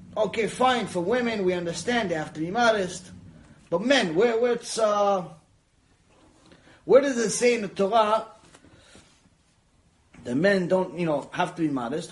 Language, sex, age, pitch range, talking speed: English, male, 30-49, 145-215 Hz, 165 wpm